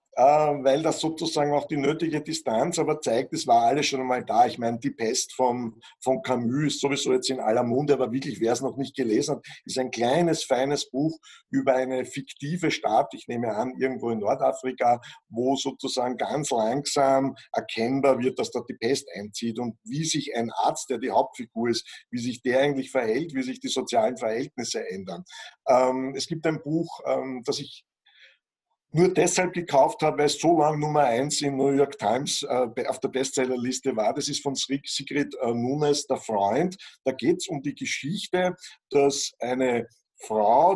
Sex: male